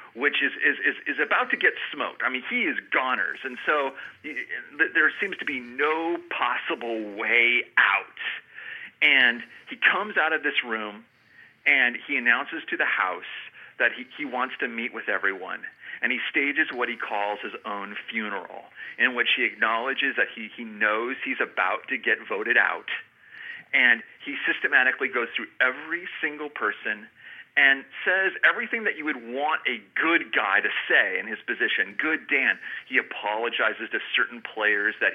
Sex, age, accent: male, 40-59, American